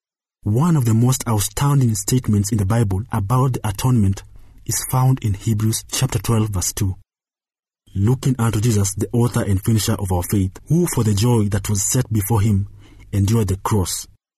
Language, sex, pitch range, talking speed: English, male, 100-120 Hz, 175 wpm